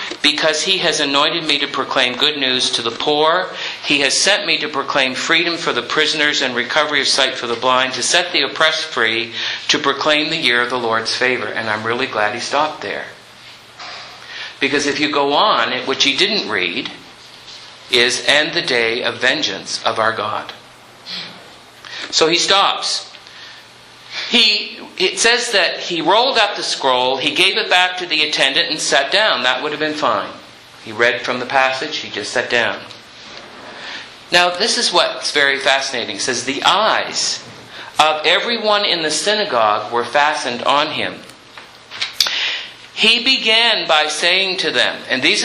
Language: English